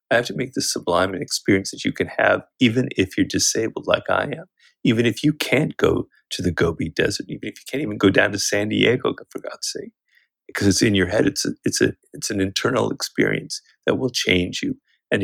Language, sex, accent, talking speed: English, male, American, 225 wpm